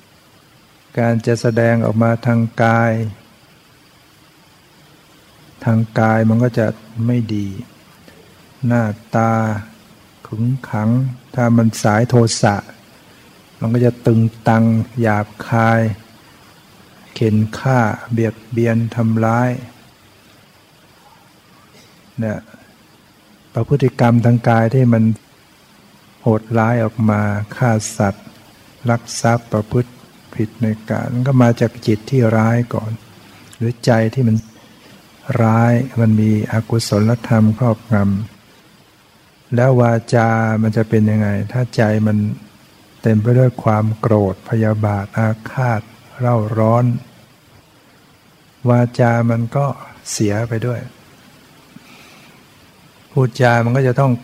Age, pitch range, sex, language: 60-79, 110-120 Hz, male, Thai